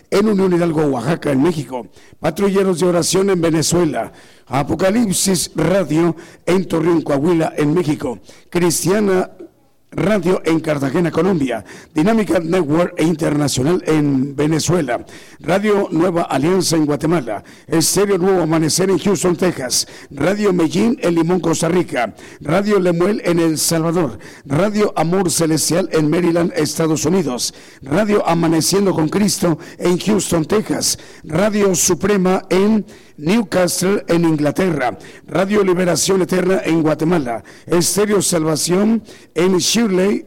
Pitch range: 155-185 Hz